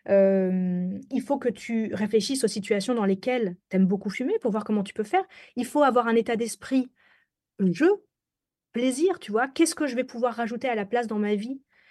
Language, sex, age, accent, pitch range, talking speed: French, female, 30-49, French, 210-270 Hz, 210 wpm